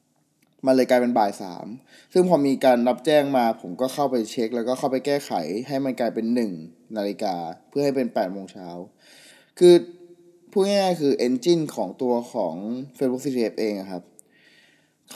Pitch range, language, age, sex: 110-145 Hz, Thai, 20-39, male